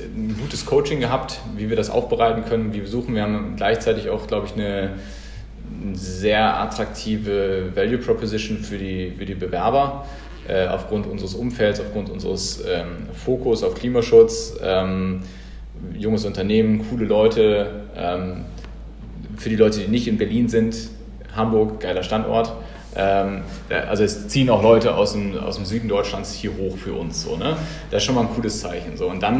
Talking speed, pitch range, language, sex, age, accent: 165 wpm, 105-125 Hz, German, male, 30-49, German